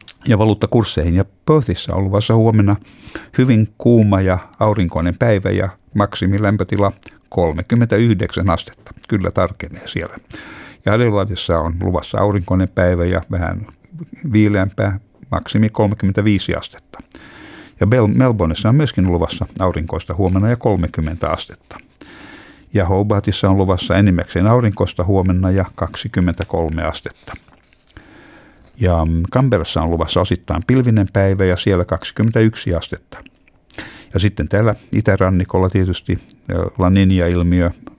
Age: 60-79